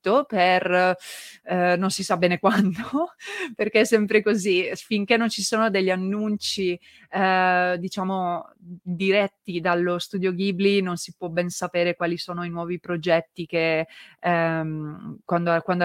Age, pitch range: 20-39, 175-195 Hz